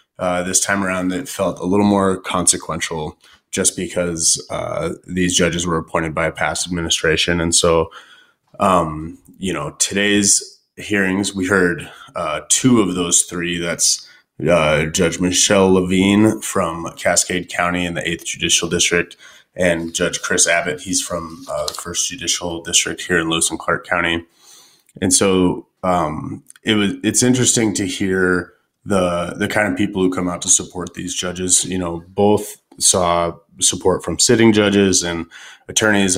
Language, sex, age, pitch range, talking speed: English, male, 20-39, 85-100 Hz, 160 wpm